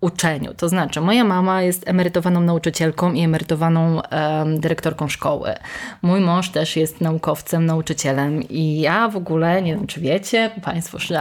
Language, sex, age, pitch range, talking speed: Polish, female, 20-39, 160-190 Hz, 155 wpm